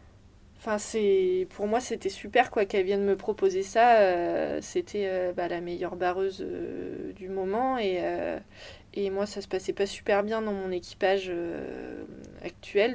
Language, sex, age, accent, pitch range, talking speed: French, female, 20-39, French, 185-215 Hz, 170 wpm